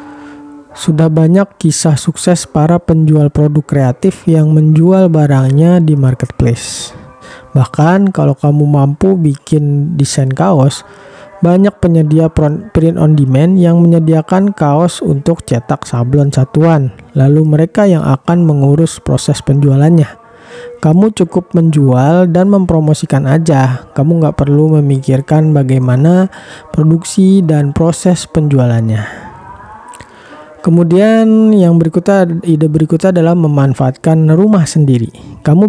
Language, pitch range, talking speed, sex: Indonesian, 145-180 Hz, 110 wpm, male